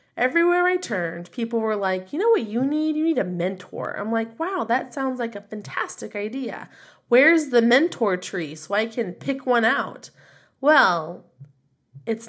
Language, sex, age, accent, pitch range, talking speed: English, female, 20-39, American, 180-245 Hz, 175 wpm